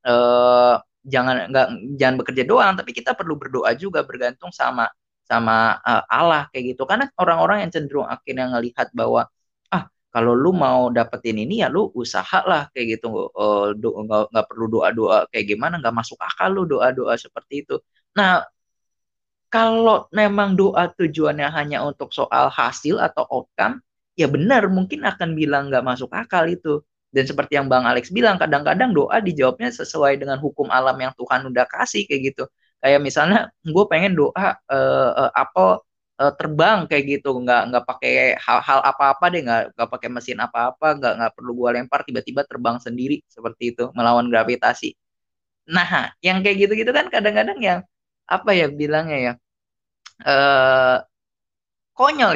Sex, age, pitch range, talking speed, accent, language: female, 20-39, 120-175 Hz, 160 wpm, native, Indonesian